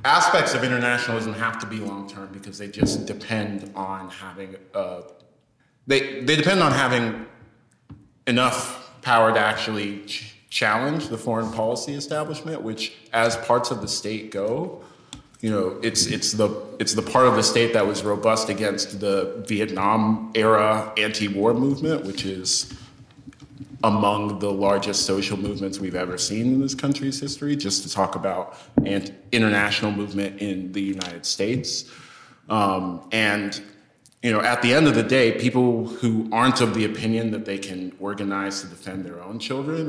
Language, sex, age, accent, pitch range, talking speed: English, male, 30-49, American, 100-120 Hz, 160 wpm